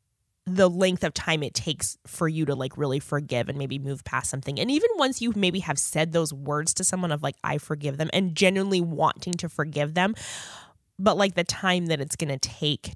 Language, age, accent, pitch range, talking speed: English, 20-39, American, 140-185 Hz, 220 wpm